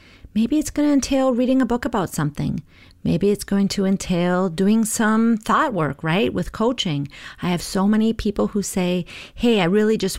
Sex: female